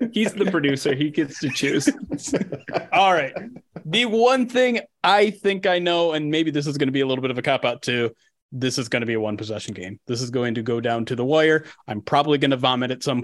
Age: 30-49